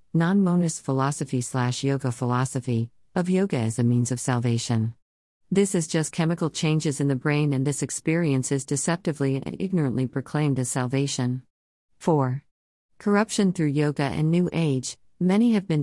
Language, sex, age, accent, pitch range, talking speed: English, female, 50-69, American, 130-160 Hz, 150 wpm